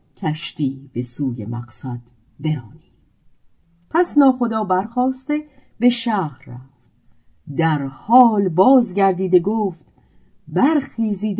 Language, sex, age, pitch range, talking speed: Persian, female, 50-69, 145-240 Hz, 85 wpm